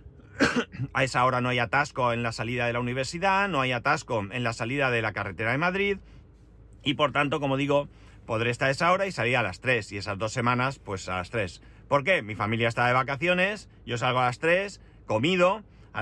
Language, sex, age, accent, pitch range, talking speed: Spanish, male, 40-59, Spanish, 105-140 Hz, 220 wpm